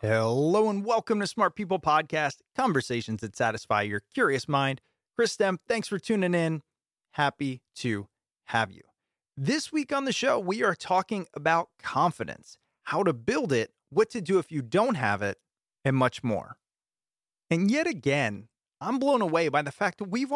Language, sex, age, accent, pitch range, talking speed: English, male, 30-49, American, 140-215 Hz, 175 wpm